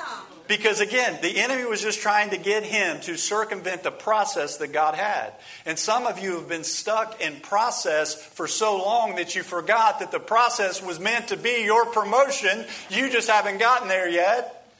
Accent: American